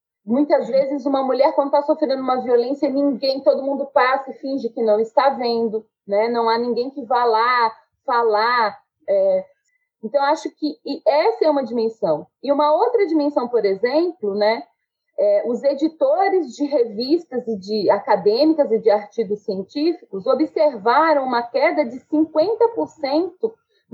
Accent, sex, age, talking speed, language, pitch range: Brazilian, female, 30-49, 150 wpm, Portuguese, 230-315 Hz